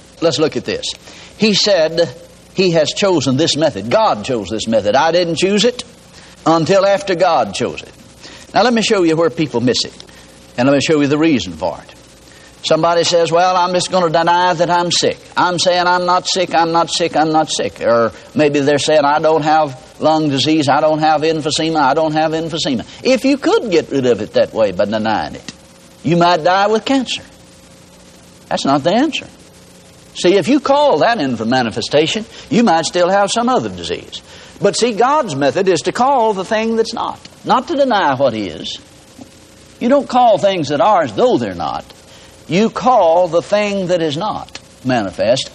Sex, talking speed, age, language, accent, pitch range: male, 200 wpm, 60-79, English, American, 145-190 Hz